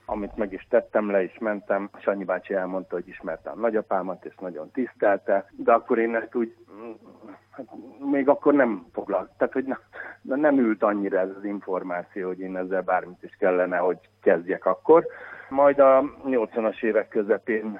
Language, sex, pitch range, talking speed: Hungarian, male, 95-110 Hz, 170 wpm